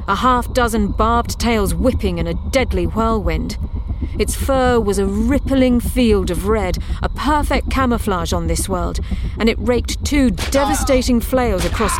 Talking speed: 155 wpm